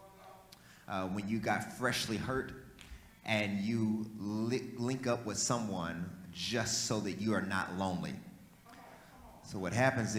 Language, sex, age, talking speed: English, male, 30-49, 130 wpm